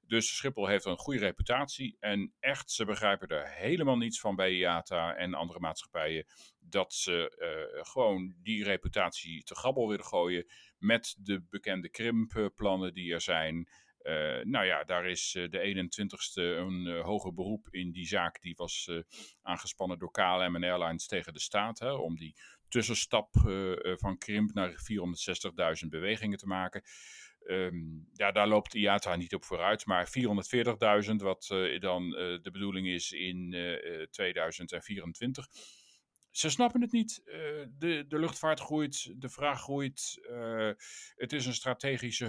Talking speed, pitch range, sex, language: 155 wpm, 90-125 Hz, male, Dutch